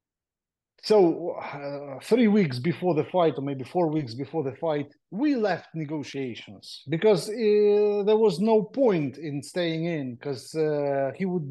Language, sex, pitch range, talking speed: English, male, 145-200 Hz, 155 wpm